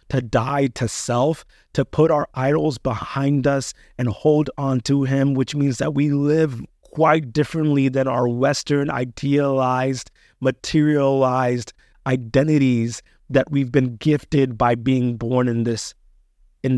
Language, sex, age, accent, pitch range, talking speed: English, male, 30-49, American, 110-135 Hz, 135 wpm